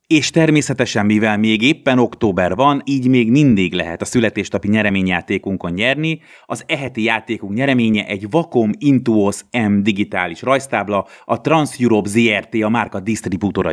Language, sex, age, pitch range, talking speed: Hungarian, male, 30-49, 95-125 Hz, 135 wpm